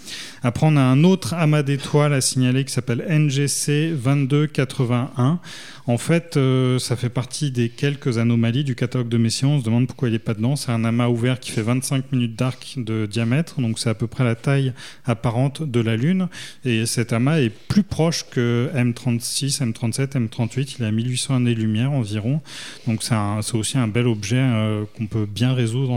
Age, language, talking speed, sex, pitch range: 30-49, French, 190 wpm, male, 115-140 Hz